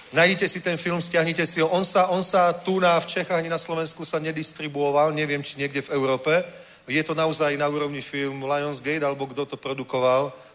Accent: native